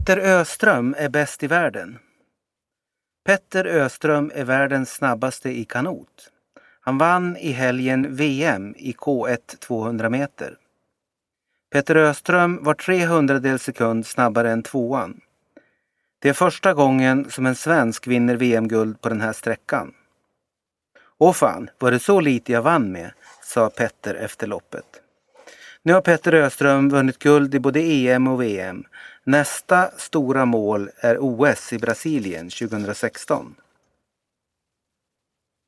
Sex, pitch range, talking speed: male, 125-160 Hz, 125 wpm